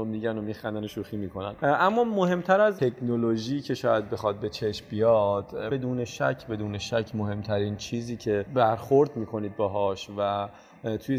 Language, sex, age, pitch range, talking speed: Persian, male, 30-49, 100-115 Hz, 155 wpm